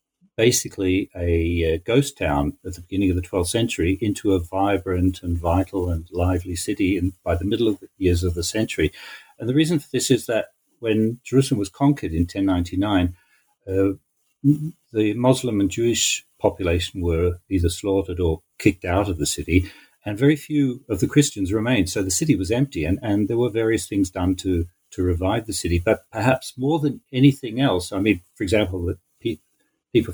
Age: 60-79